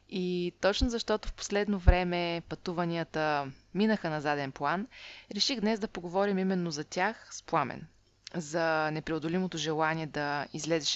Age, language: 20-39, Bulgarian